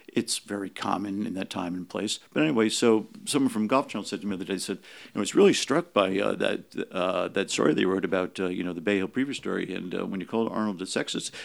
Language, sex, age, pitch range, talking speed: English, male, 50-69, 95-115 Hz, 265 wpm